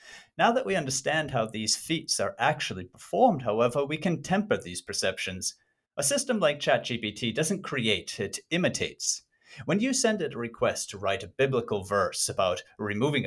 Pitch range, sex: 110-170 Hz, male